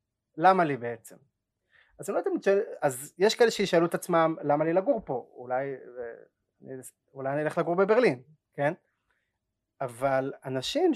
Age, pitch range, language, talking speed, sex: 30-49, 135-195 Hz, Hebrew, 135 wpm, male